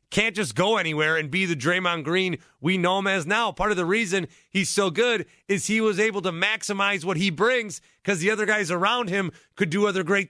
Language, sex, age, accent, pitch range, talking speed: English, male, 30-49, American, 155-210 Hz, 235 wpm